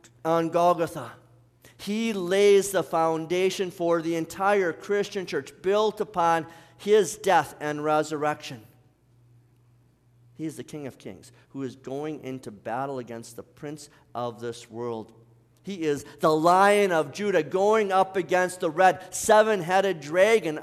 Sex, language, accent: male, English, American